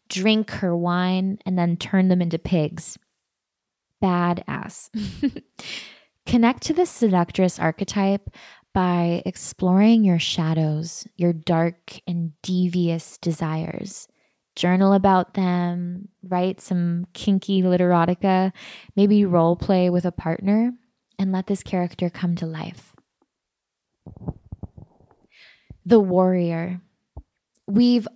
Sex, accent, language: female, American, English